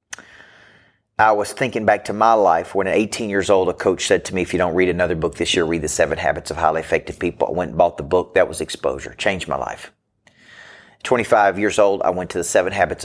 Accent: American